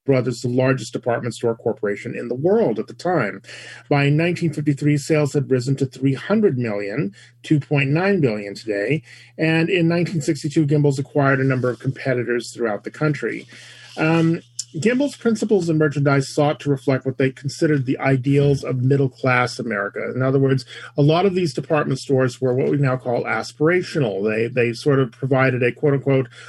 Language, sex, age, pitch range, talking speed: English, male, 40-59, 125-155 Hz, 165 wpm